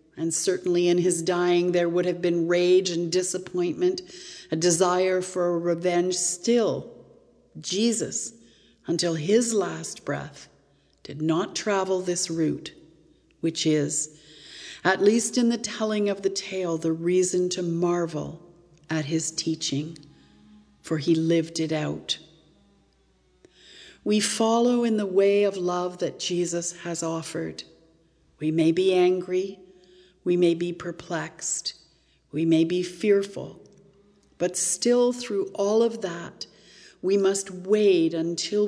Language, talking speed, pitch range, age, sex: English, 125 wpm, 165-200 Hz, 50-69, female